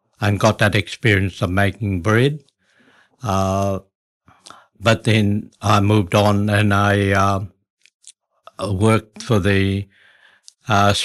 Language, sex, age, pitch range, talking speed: English, male, 60-79, 95-105 Hz, 110 wpm